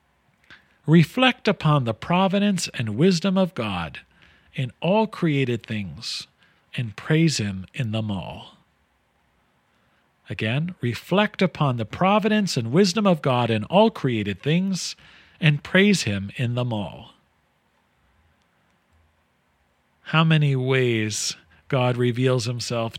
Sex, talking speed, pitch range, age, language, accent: male, 110 wpm, 110-170 Hz, 40-59, English, American